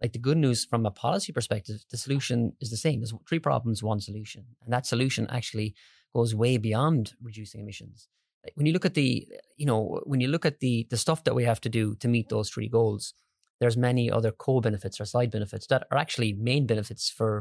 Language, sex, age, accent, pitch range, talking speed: English, male, 30-49, Irish, 110-125 Hz, 220 wpm